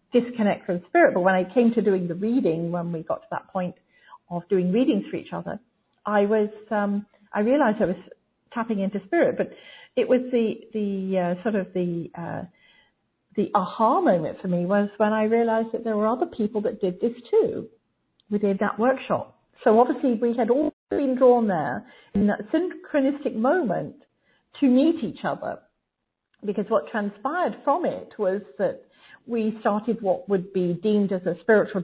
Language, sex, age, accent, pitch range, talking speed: English, female, 50-69, British, 190-240 Hz, 185 wpm